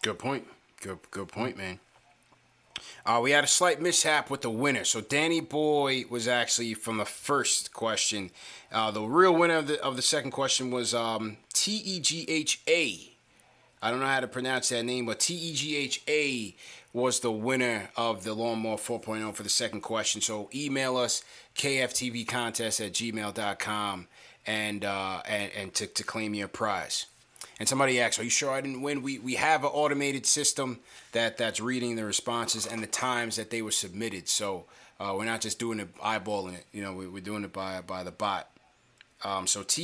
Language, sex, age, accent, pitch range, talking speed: English, male, 30-49, American, 110-140 Hz, 185 wpm